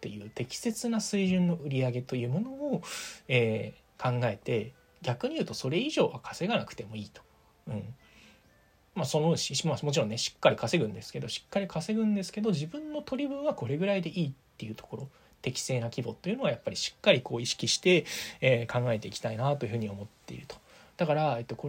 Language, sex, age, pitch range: Japanese, male, 20-39, 115-170 Hz